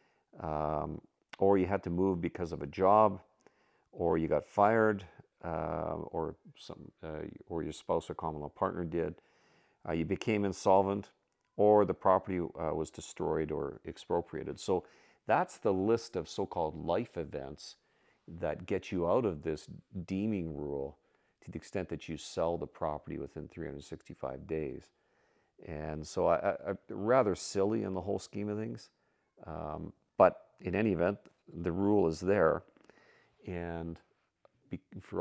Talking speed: 150 wpm